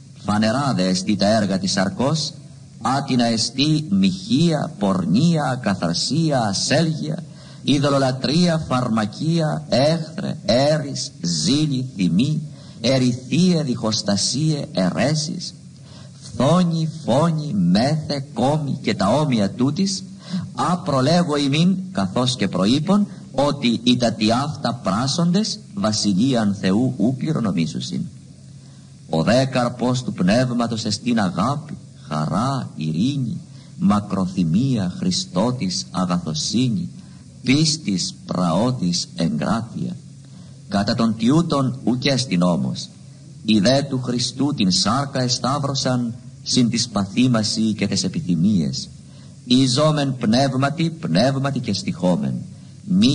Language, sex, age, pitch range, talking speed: Greek, male, 50-69, 115-160 Hz, 90 wpm